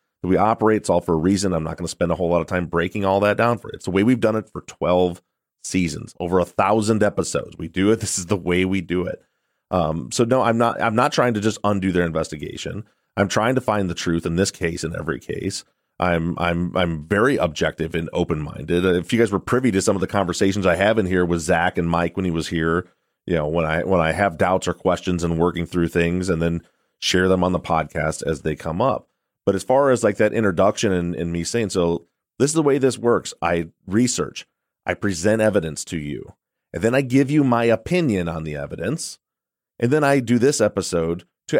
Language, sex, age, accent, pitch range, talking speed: English, male, 30-49, American, 85-110 Hz, 240 wpm